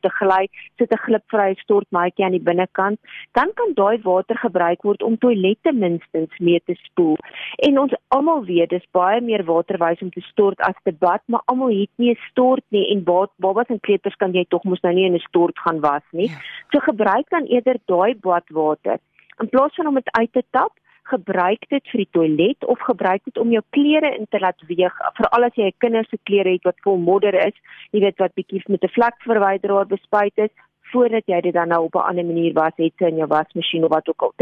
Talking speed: 220 wpm